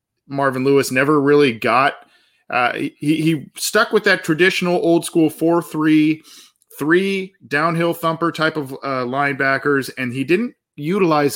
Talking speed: 135 wpm